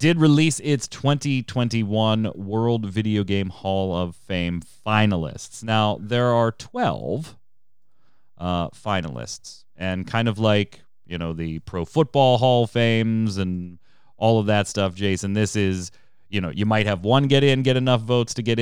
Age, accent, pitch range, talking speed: 30-49, American, 95-120 Hz, 160 wpm